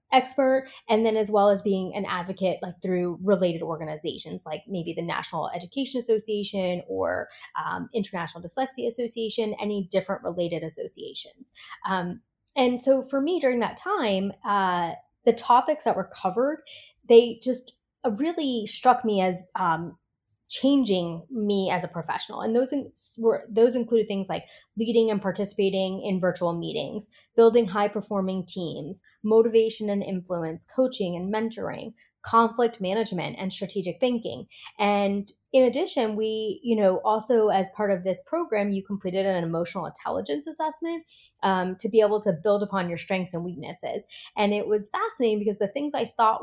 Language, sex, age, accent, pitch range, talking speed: English, female, 20-39, American, 185-235 Hz, 155 wpm